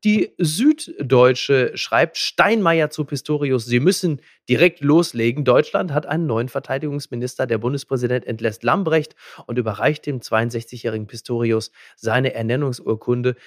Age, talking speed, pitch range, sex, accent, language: 30-49, 115 wpm, 125-150 Hz, male, German, German